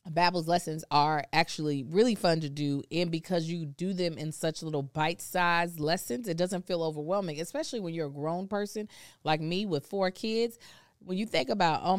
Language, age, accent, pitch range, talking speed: English, 20-39, American, 150-195 Hz, 190 wpm